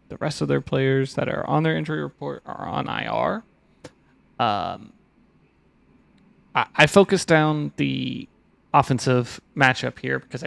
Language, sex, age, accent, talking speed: English, male, 30-49, American, 140 wpm